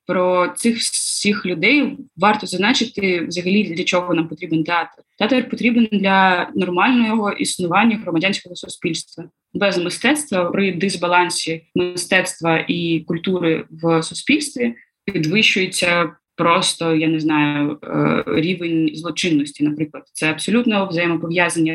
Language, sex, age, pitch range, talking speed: Ukrainian, female, 20-39, 170-205 Hz, 110 wpm